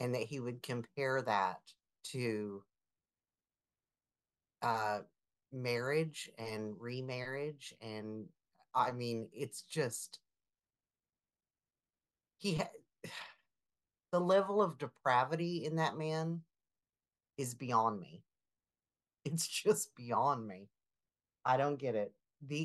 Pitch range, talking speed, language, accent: 115-155 Hz, 100 wpm, English, American